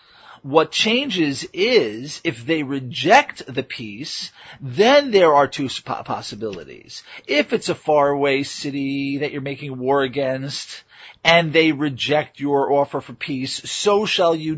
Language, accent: English, American